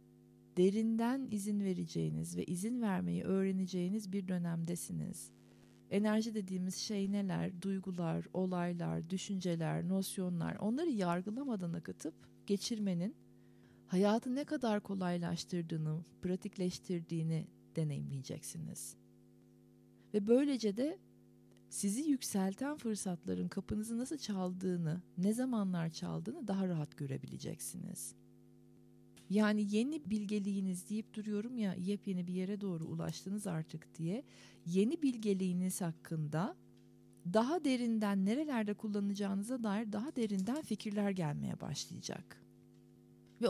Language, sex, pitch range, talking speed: Turkish, female, 175-220 Hz, 95 wpm